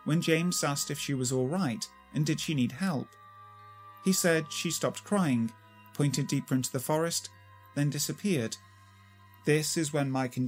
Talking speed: 165 wpm